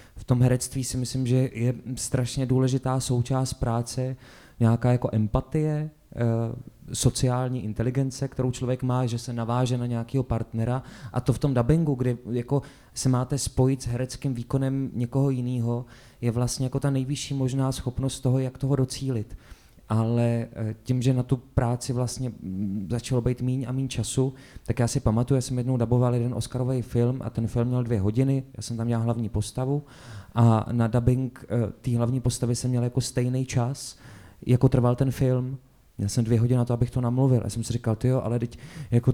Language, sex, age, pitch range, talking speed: Czech, male, 20-39, 120-130 Hz, 180 wpm